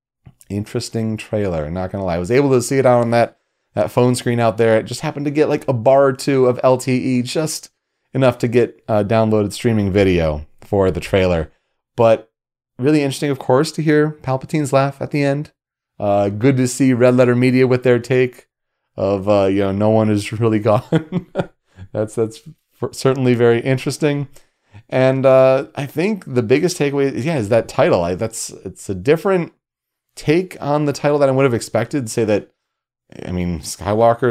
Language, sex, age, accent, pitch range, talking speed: English, male, 30-49, American, 95-135 Hz, 185 wpm